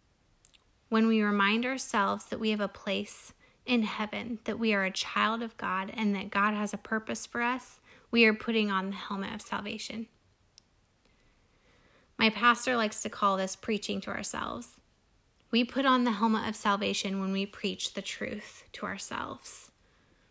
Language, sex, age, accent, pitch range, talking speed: English, female, 10-29, American, 195-225 Hz, 170 wpm